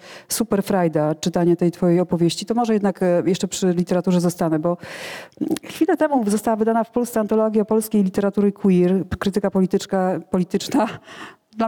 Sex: female